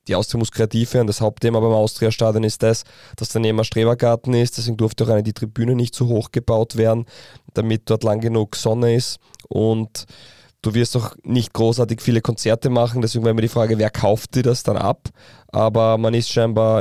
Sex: male